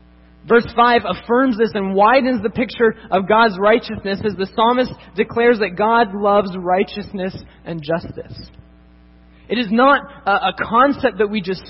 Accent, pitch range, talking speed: American, 205-255 Hz, 155 wpm